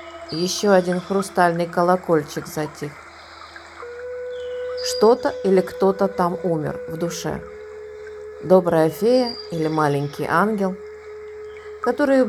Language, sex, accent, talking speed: Russian, female, native, 90 wpm